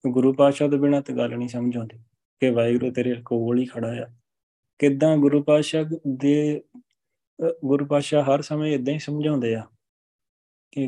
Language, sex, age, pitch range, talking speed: Punjabi, male, 20-39, 115-130 Hz, 155 wpm